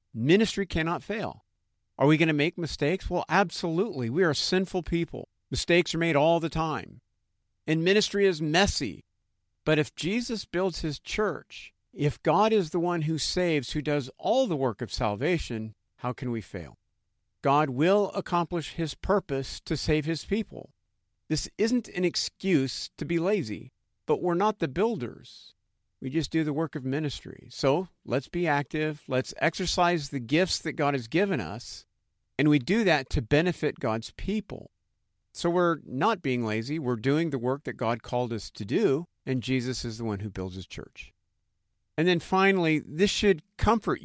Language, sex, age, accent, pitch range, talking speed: English, male, 50-69, American, 115-175 Hz, 175 wpm